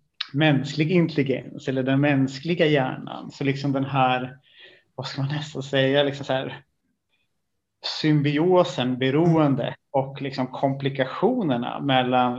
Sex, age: male, 30-49